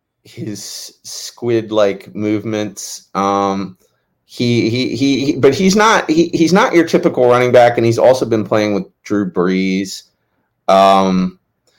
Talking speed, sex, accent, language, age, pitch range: 135 wpm, male, American, English, 30-49, 105-155 Hz